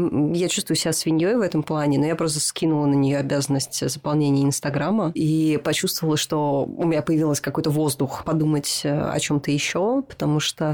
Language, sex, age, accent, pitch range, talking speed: Russian, female, 20-39, native, 145-165 Hz, 170 wpm